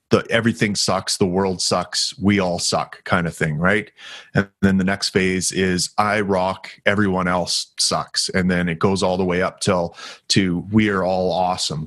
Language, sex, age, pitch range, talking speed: English, male, 30-49, 90-100 Hz, 185 wpm